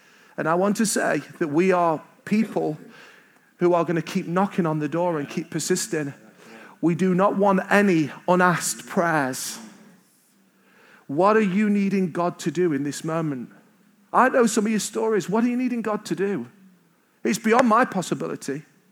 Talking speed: 175 wpm